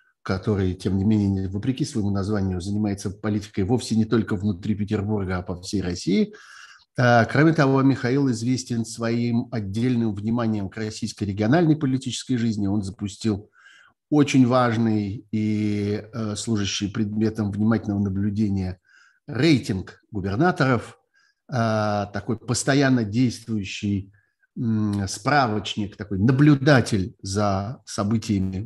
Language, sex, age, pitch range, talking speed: Russian, male, 50-69, 105-130 Hz, 105 wpm